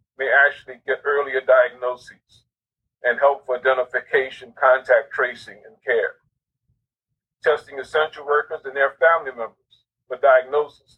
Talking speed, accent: 120 wpm, American